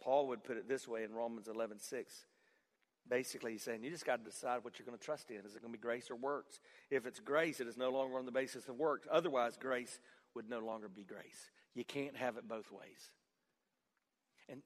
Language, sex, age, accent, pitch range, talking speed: English, male, 40-59, American, 140-205 Hz, 240 wpm